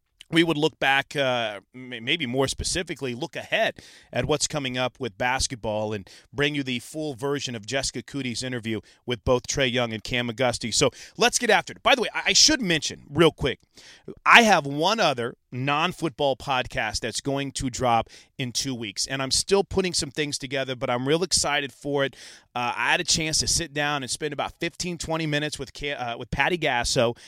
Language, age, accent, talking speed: English, 30-49, American, 200 wpm